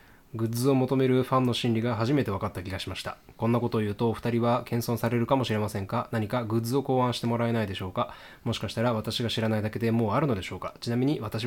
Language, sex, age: Japanese, male, 20-39